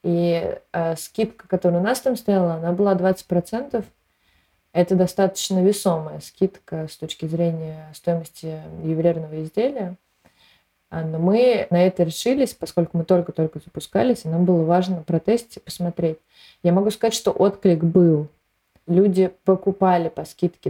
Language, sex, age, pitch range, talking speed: Russian, female, 20-39, 165-190 Hz, 135 wpm